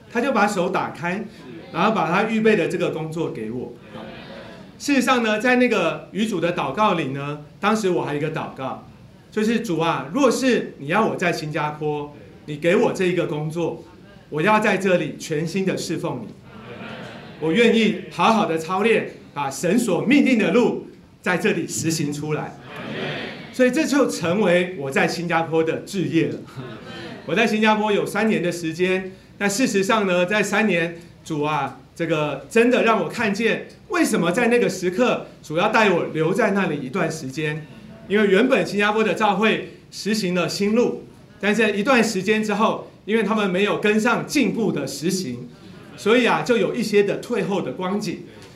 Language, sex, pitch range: Chinese, male, 165-220 Hz